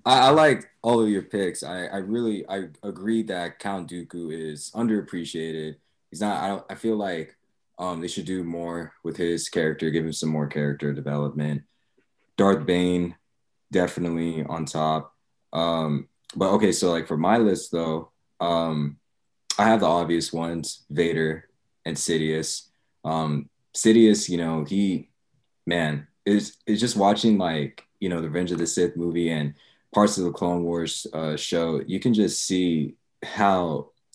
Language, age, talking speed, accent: English, 20-39, 160 wpm, American